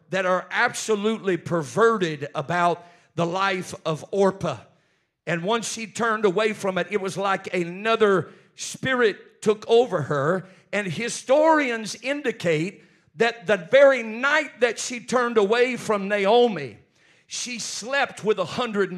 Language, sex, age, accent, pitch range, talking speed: English, male, 50-69, American, 180-235 Hz, 135 wpm